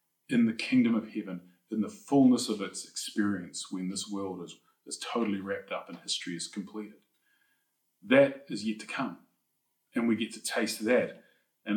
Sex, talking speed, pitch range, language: male, 180 wpm, 105-145 Hz, English